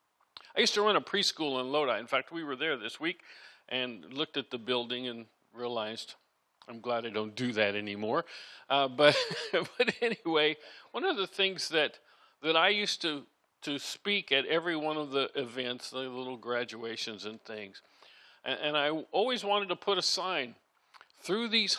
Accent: American